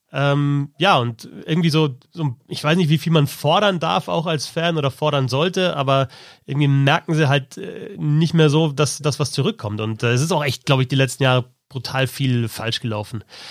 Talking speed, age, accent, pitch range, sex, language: 215 wpm, 30-49, German, 125-155 Hz, male, German